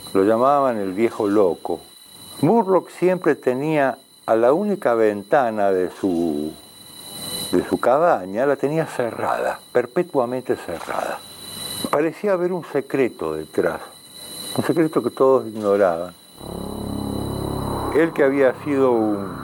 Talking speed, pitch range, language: 115 wpm, 105-140 Hz, Spanish